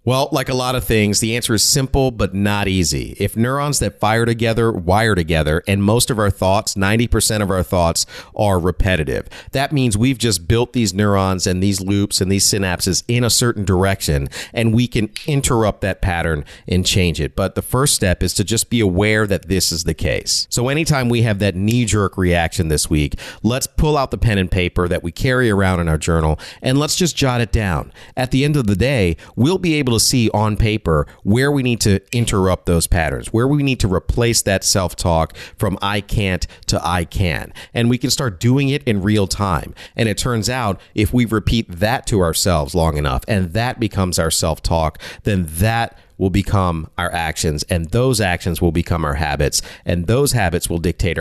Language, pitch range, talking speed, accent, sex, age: English, 90-115 Hz, 205 wpm, American, male, 40-59